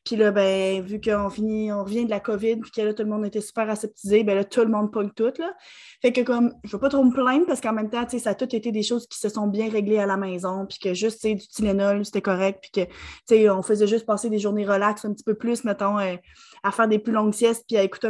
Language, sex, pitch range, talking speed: French, female, 210-240 Hz, 300 wpm